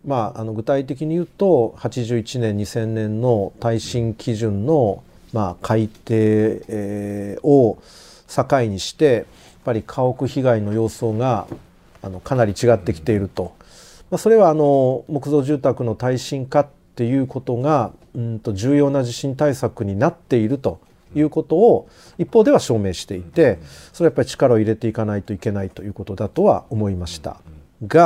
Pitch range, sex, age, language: 105-145 Hz, male, 40-59, Japanese